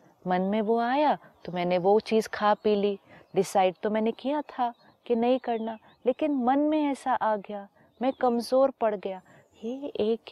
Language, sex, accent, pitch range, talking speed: Hindi, female, native, 190-240 Hz, 180 wpm